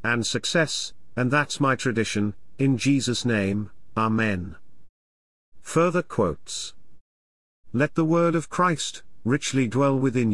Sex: male